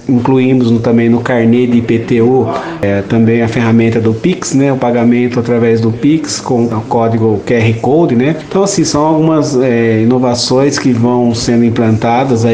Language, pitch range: Portuguese, 115-130 Hz